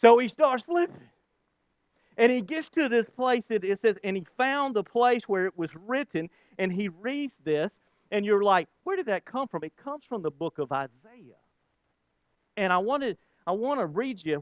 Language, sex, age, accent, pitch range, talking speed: English, male, 40-59, American, 155-220 Hz, 205 wpm